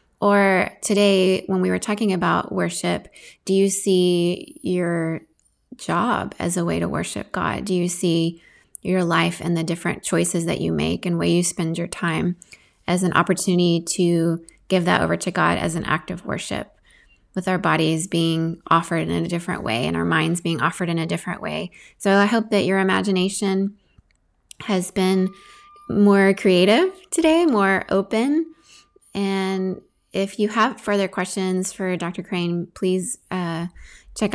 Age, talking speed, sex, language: 20-39, 165 wpm, female, English